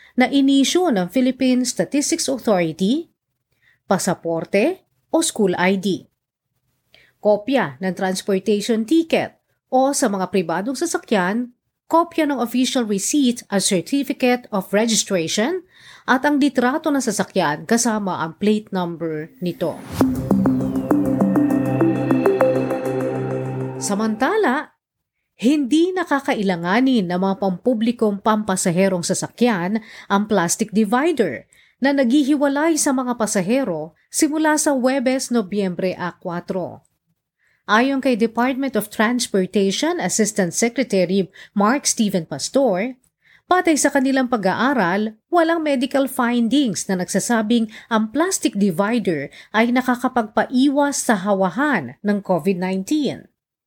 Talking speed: 95 wpm